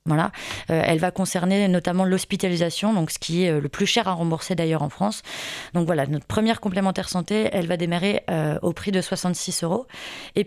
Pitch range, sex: 170-210 Hz, female